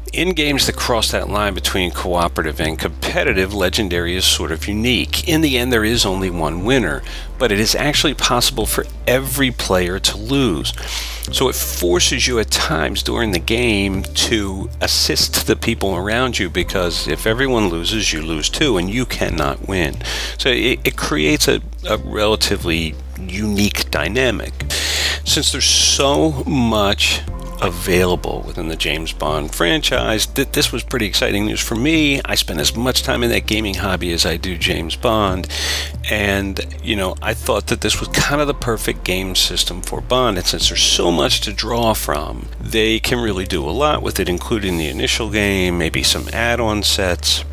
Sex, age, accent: male, 40-59, American